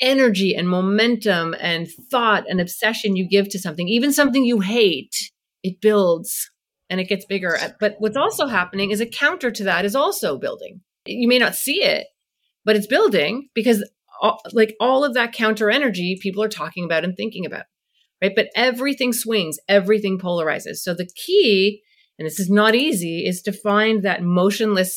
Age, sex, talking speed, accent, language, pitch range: 30-49, female, 180 wpm, American, English, 185-240 Hz